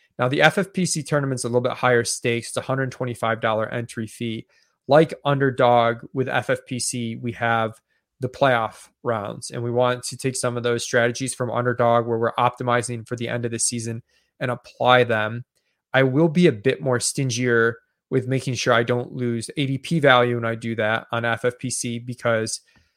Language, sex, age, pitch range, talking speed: English, male, 20-39, 115-130 Hz, 175 wpm